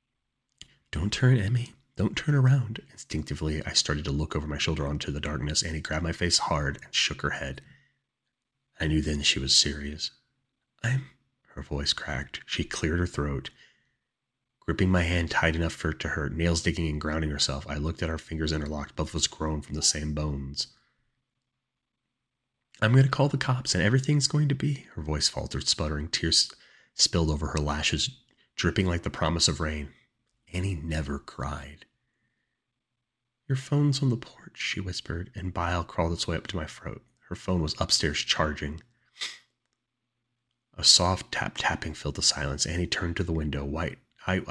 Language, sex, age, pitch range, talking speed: English, male, 30-49, 75-110 Hz, 175 wpm